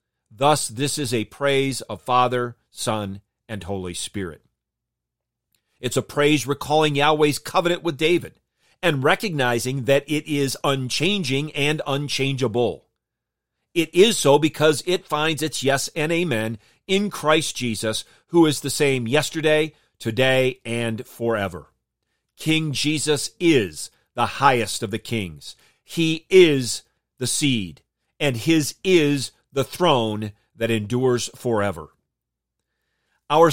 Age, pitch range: 40-59, 120-155 Hz